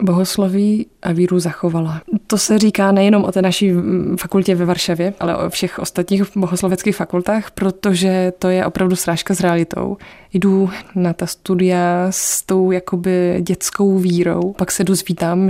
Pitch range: 180-195 Hz